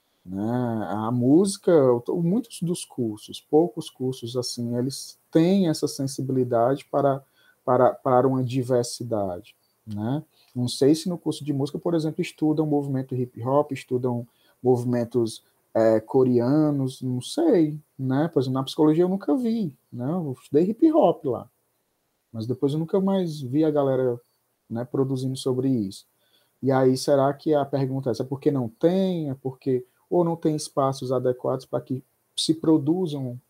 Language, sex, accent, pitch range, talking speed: Portuguese, male, Brazilian, 125-160 Hz, 155 wpm